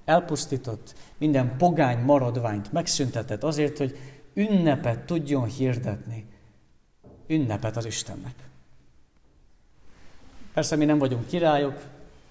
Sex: male